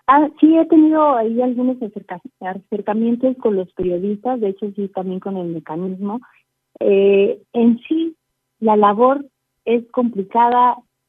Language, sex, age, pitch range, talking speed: Spanish, female, 30-49, 185-230 Hz, 130 wpm